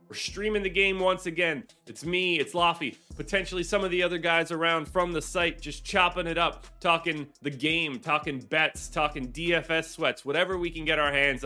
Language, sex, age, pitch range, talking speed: English, male, 30-49, 140-180 Hz, 200 wpm